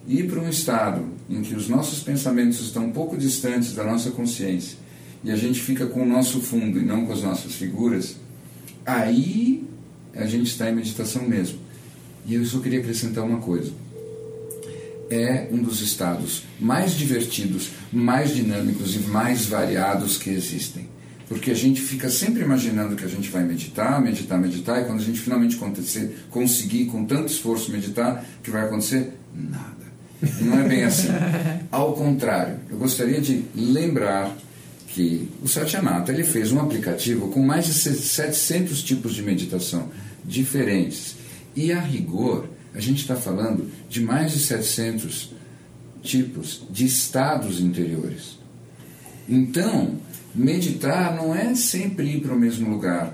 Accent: Brazilian